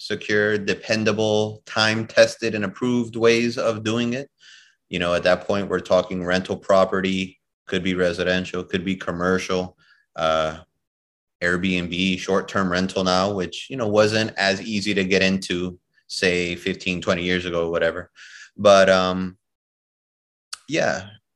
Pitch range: 90-105 Hz